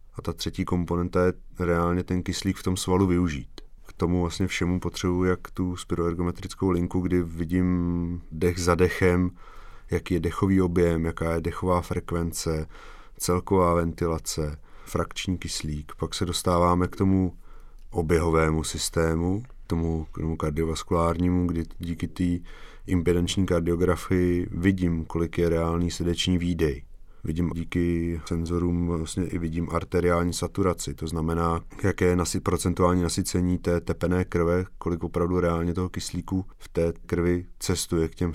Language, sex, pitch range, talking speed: Czech, male, 85-95 Hz, 140 wpm